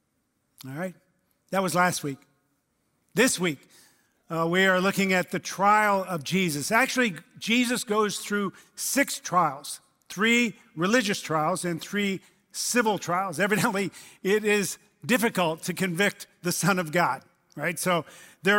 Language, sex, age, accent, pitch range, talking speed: English, male, 50-69, American, 170-205 Hz, 140 wpm